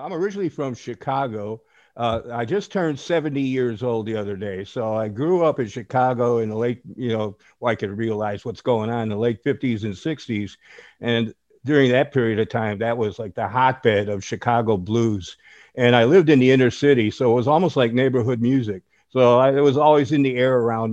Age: 50-69